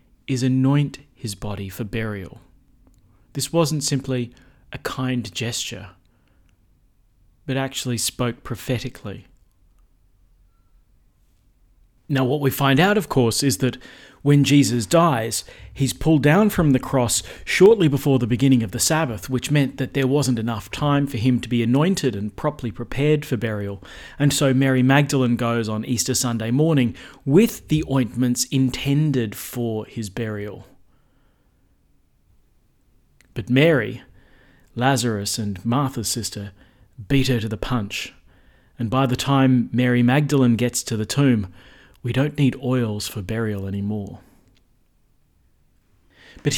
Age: 40-59